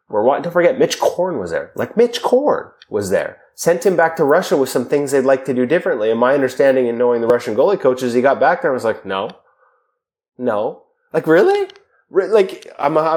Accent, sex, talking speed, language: American, male, 225 wpm, English